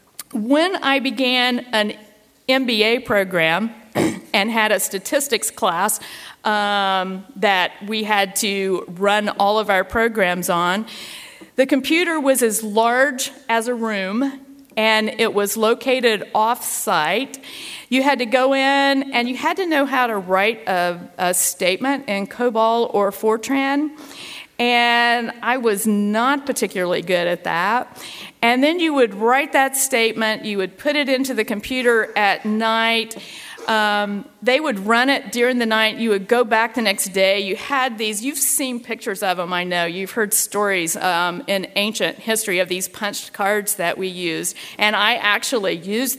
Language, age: English, 50-69